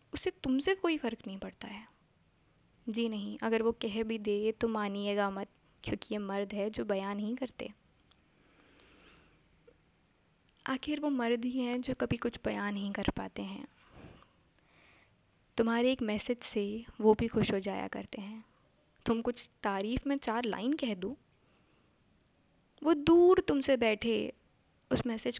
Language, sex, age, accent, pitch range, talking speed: Hindi, female, 20-39, native, 205-245 Hz, 150 wpm